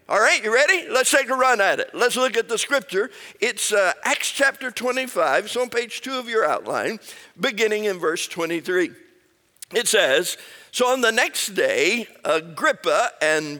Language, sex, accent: English, male, American